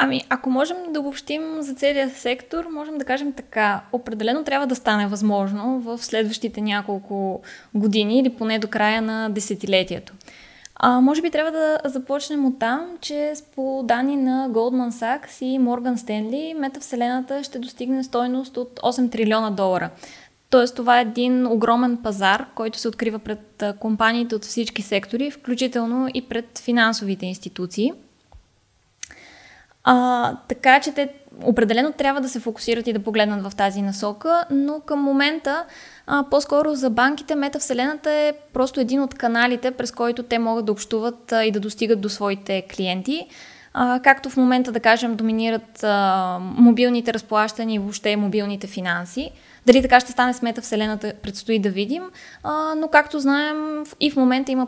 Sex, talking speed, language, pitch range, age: female, 160 wpm, Bulgarian, 220-270 Hz, 20-39